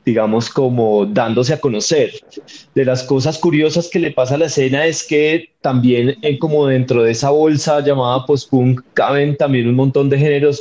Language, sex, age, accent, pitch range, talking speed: Spanish, male, 30-49, Colombian, 120-150 Hz, 175 wpm